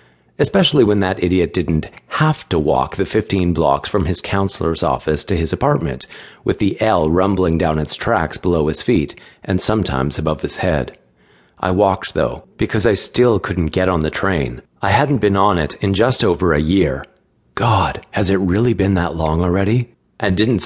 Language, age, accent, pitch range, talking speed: English, 40-59, American, 80-100 Hz, 185 wpm